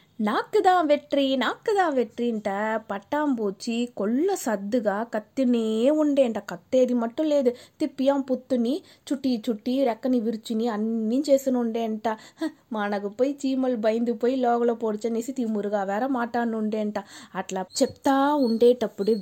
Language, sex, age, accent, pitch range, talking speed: Telugu, female, 20-39, native, 215-270 Hz, 105 wpm